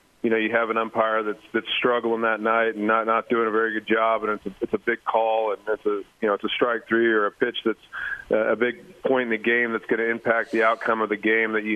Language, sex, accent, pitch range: English, male, American, 105-115 Hz